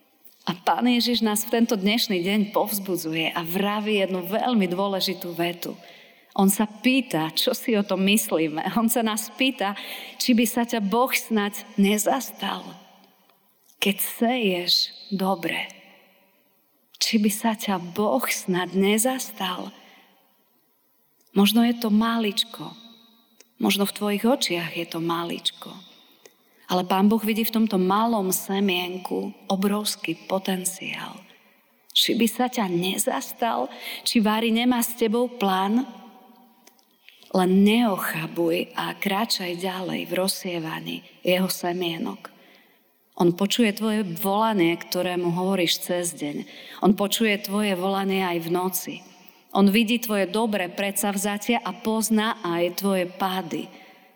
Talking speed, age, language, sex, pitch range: 120 wpm, 30-49, Slovak, female, 185-230 Hz